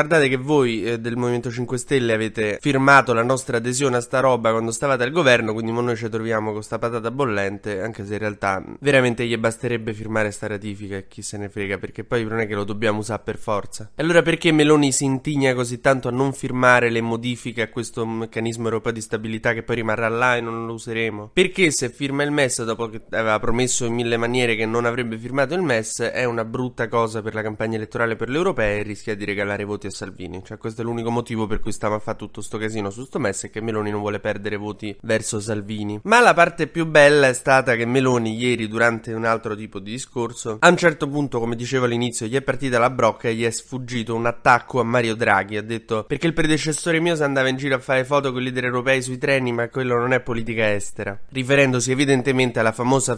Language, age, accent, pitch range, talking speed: Italian, 20-39, native, 110-130 Hz, 230 wpm